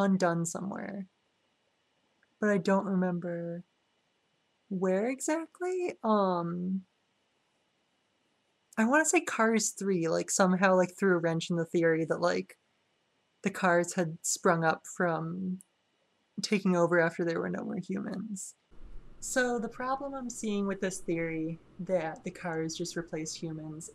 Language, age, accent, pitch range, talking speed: English, 20-39, American, 170-210 Hz, 135 wpm